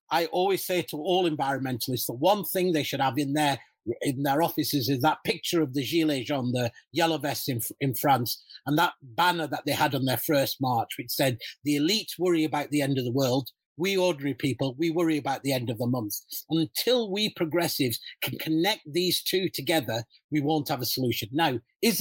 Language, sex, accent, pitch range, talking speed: English, male, British, 135-175 Hz, 210 wpm